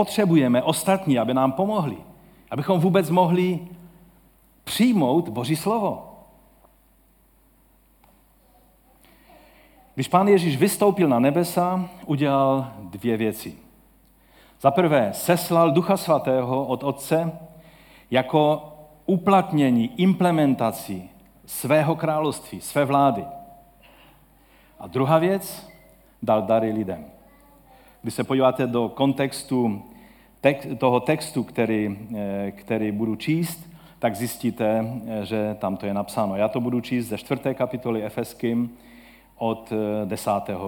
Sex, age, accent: male, 50-69, native